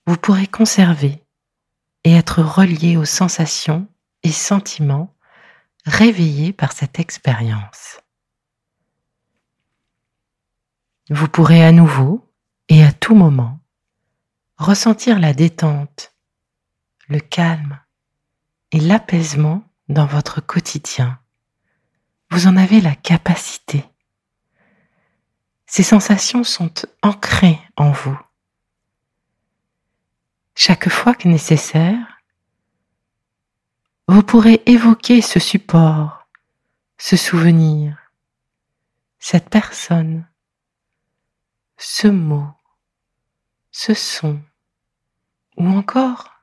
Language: French